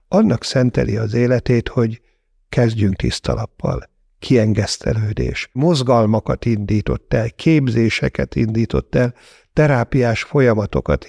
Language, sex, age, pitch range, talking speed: Hungarian, male, 60-79, 110-130 Hz, 85 wpm